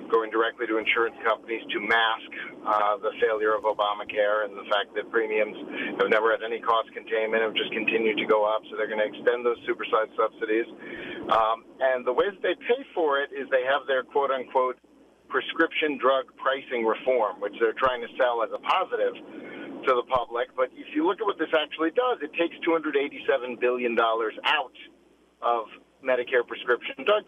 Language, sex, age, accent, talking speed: English, male, 50-69, American, 185 wpm